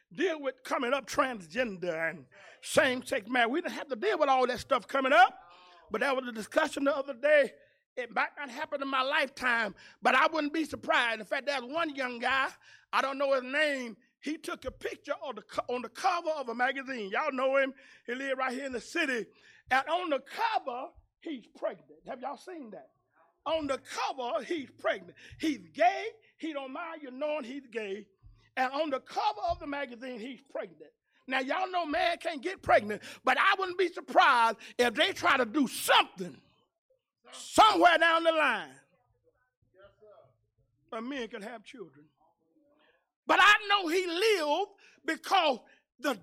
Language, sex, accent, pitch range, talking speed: English, male, American, 250-330 Hz, 180 wpm